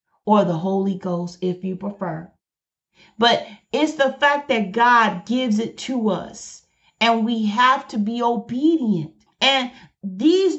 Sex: female